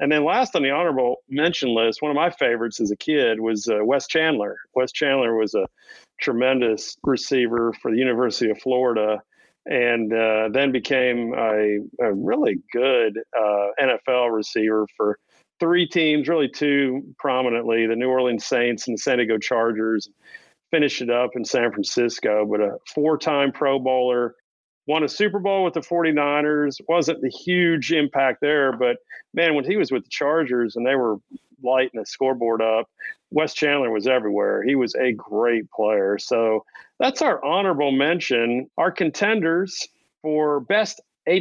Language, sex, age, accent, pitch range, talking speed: English, male, 50-69, American, 120-160 Hz, 160 wpm